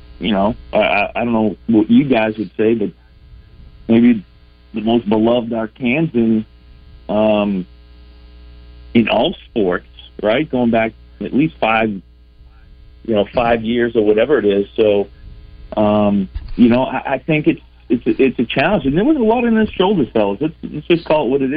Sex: male